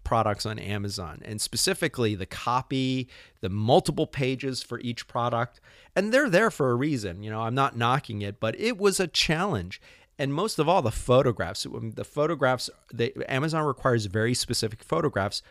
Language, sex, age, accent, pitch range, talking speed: English, male, 30-49, American, 105-135 Hz, 170 wpm